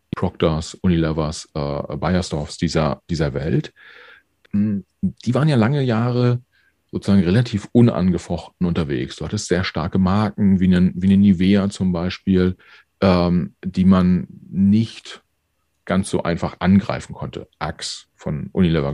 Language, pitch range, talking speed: German, 85-105 Hz, 125 wpm